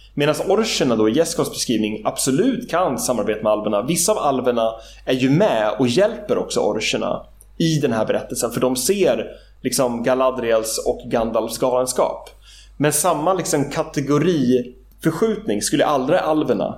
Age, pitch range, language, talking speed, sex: 30-49, 125-175 Hz, English, 140 wpm, male